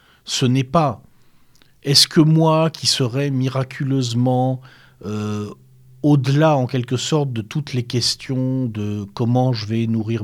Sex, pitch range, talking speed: male, 115-145 Hz, 135 wpm